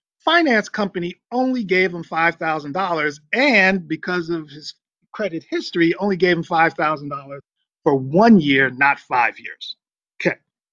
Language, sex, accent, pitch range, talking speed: English, male, American, 150-215 Hz, 130 wpm